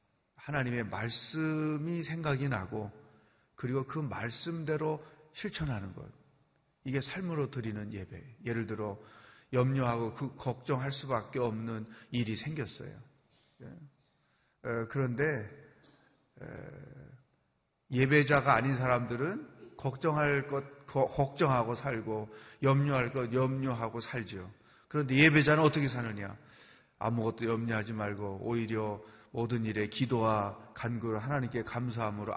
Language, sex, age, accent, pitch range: Korean, male, 30-49, native, 115-150 Hz